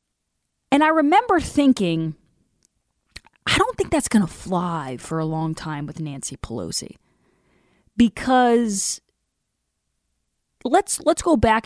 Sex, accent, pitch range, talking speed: female, American, 170-230 Hz, 120 wpm